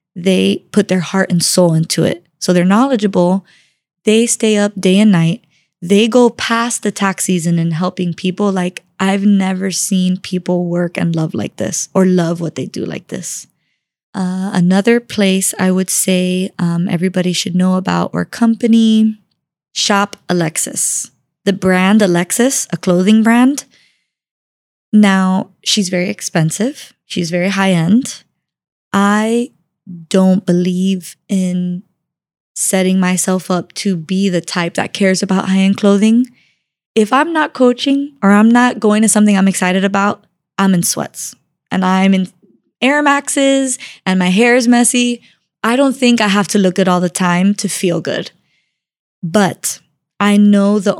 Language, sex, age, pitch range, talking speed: English, female, 20-39, 180-210 Hz, 155 wpm